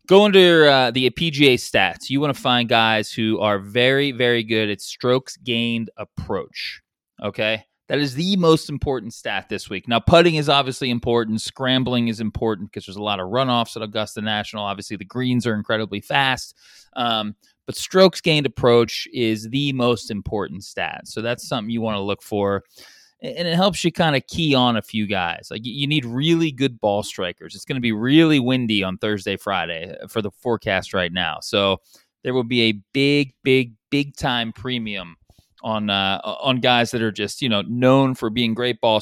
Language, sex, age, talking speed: English, male, 20-39, 195 wpm